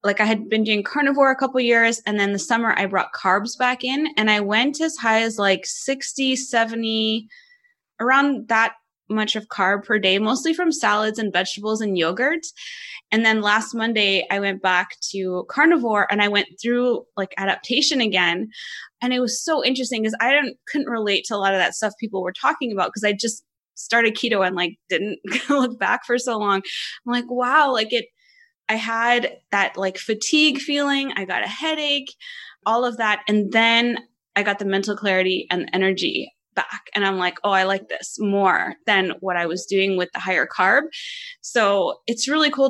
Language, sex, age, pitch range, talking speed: English, female, 20-39, 195-245 Hz, 195 wpm